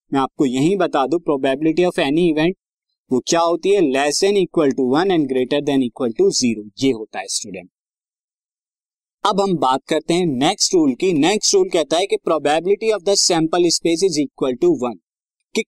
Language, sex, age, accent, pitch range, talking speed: Hindi, male, 20-39, native, 150-195 Hz, 160 wpm